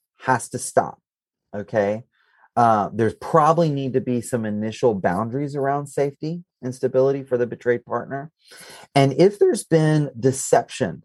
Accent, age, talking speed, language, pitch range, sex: American, 30-49, 140 wpm, English, 110-140 Hz, male